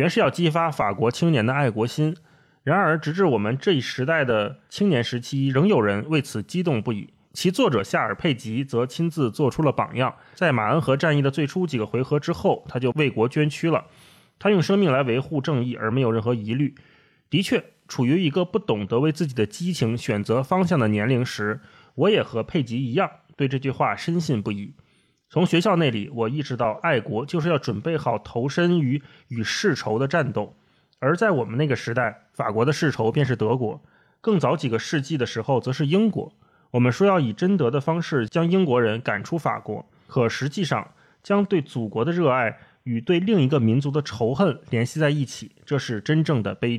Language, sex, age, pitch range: Chinese, male, 20-39, 120-165 Hz